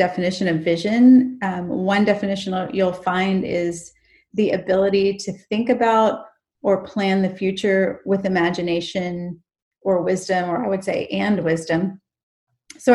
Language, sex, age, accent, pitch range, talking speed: English, female, 30-49, American, 180-220 Hz, 135 wpm